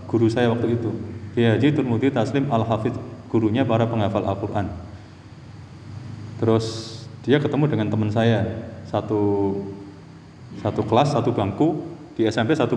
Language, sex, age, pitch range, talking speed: Indonesian, male, 20-39, 105-125 Hz, 130 wpm